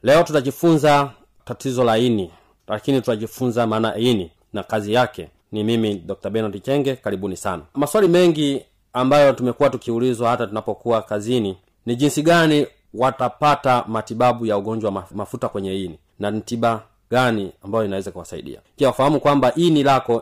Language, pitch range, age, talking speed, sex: Swahili, 115-150 Hz, 40-59, 140 wpm, male